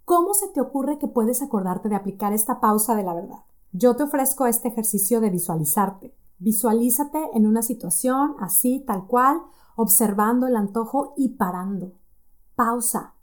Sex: female